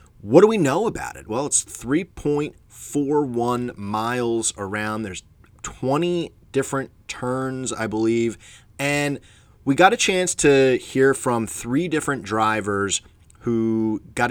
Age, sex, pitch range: 30-49, male, 100-125 Hz